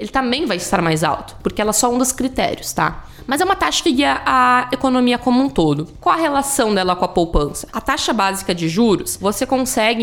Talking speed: 235 wpm